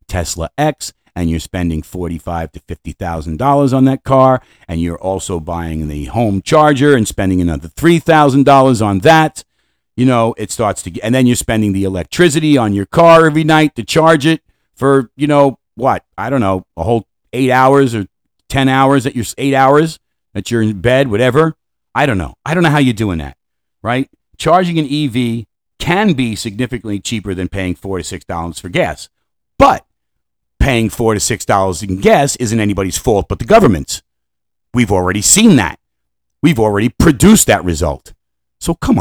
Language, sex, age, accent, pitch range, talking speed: English, male, 50-69, American, 95-140 Hz, 190 wpm